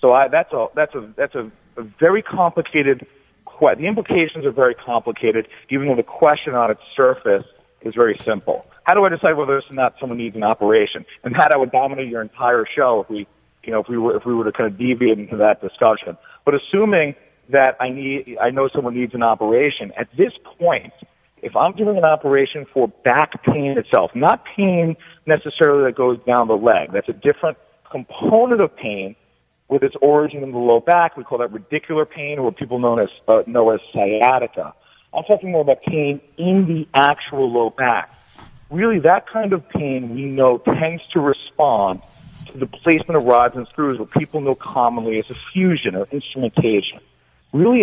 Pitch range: 120-160 Hz